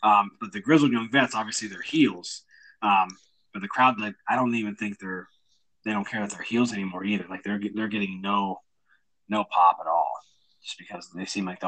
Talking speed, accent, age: 215 wpm, American, 20-39